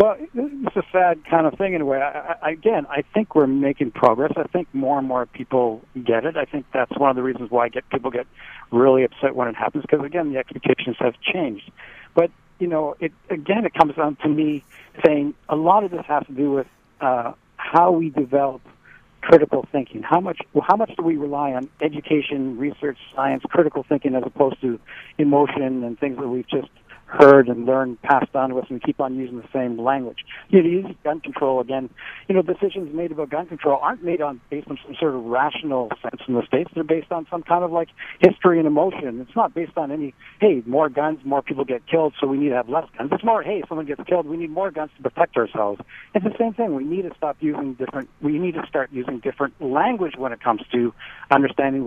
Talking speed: 225 wpm